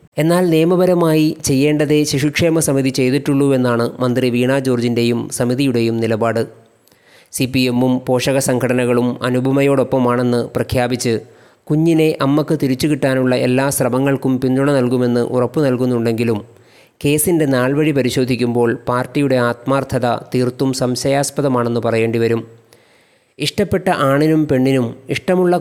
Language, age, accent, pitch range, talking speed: Malayalam, 30-49, native, 125-145 Hz, 95 wpm